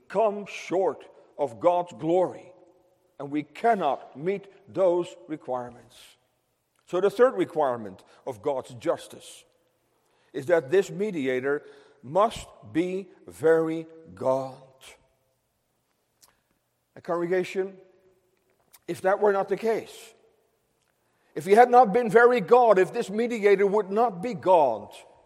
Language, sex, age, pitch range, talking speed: English, male, 50-69, 155-225 Hz, 115 wpm